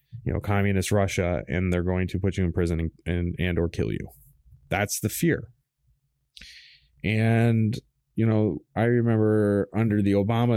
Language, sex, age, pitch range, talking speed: English, male, 30-49, 90-110 Hz, 165 wpm